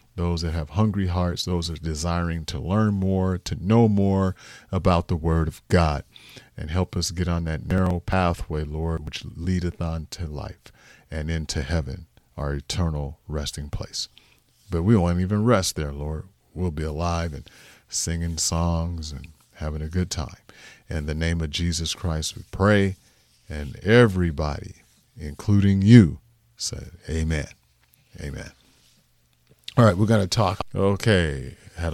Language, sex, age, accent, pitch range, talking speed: English, male, 40-59, American, 80-95 Hz, 155 wpm